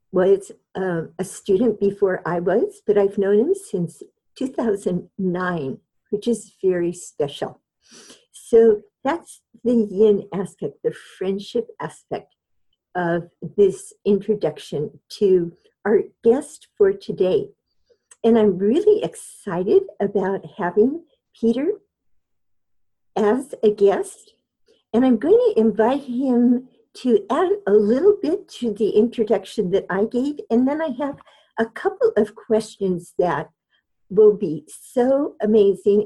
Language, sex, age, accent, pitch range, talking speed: English, female, 50-69, American, 195-290 Hz, 120 wpm